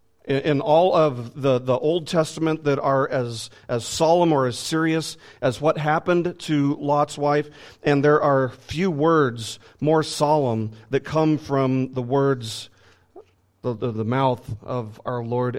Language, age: English, 40-59